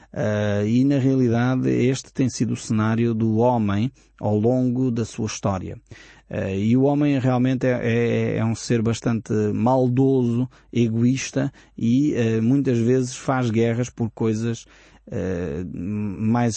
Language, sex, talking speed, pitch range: Portuguese, male, 125 wpm, 110-130 Hz